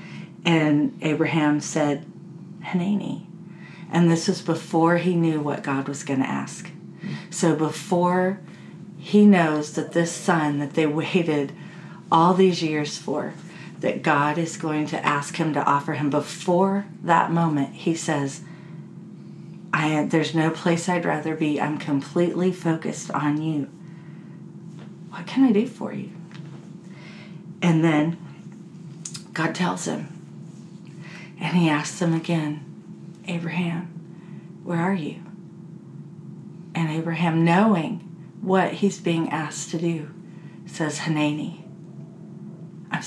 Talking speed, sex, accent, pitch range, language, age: 125 wpm, female, American, 160-180 Hz, English, 40-59